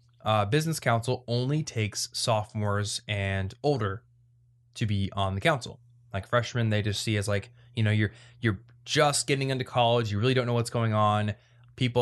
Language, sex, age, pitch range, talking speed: English, male, 20-39, 105-120 Hz, 180 wpm